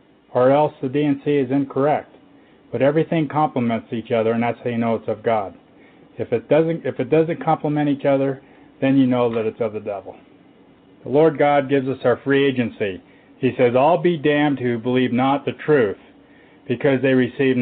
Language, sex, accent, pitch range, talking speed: English, male, American, 120-145 Hz, 185 wpm